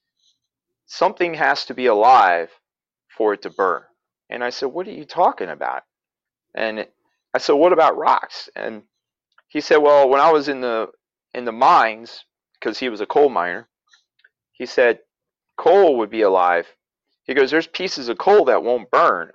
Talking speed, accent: 175 wpm, American